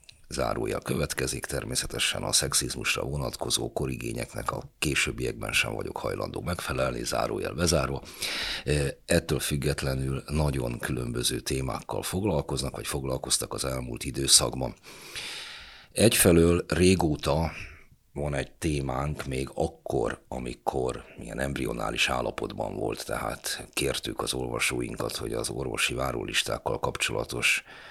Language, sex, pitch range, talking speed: Hungarian, male, 65-75 Hz, 100 wpm